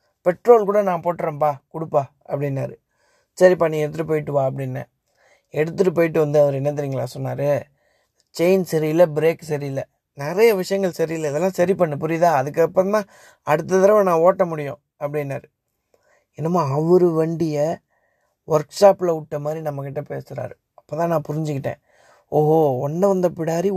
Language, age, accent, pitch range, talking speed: Tamil, 20-39, native, 150-185 Hz, 130 wpm